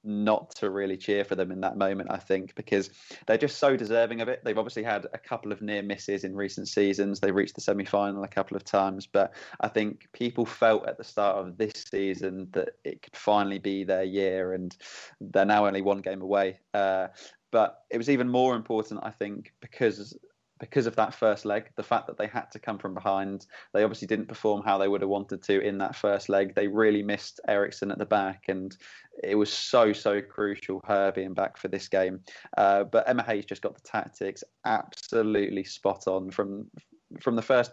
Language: English